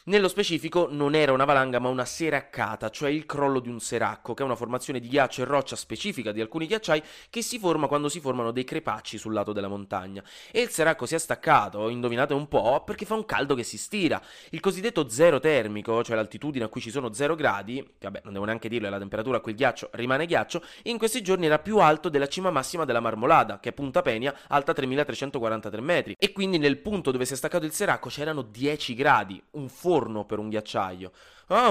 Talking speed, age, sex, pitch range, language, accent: 225 wpm, 20-39, male, 115-160 Hz, Italian, native